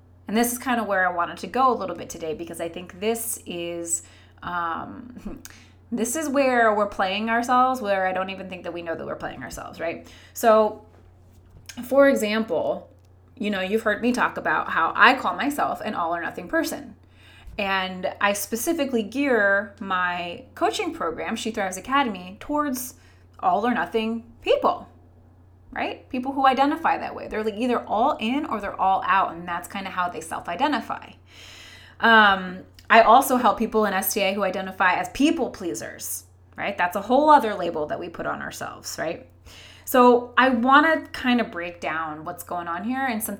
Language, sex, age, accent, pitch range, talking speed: English, female, 20-39, American, 175-245 Hz, 185 wpm